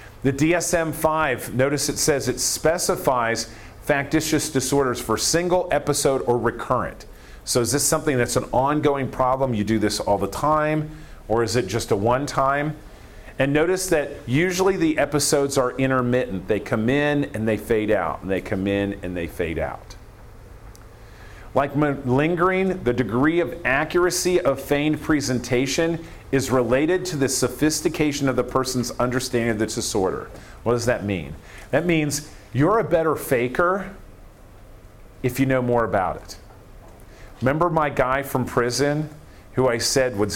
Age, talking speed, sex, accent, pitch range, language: 40-59, 155 wpm, male, American, 110-150 Hz, English